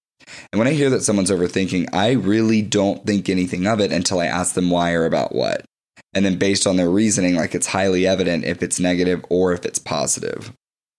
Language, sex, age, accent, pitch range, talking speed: English, male, 10-29, American, 85-100 Hz, 215 wpm